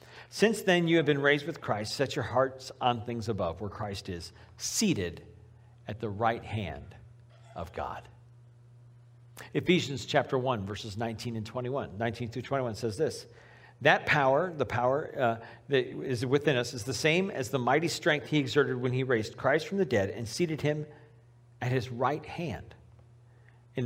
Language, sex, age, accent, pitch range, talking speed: English, male, 50-69, American, 115-130 Hz, 175 wpm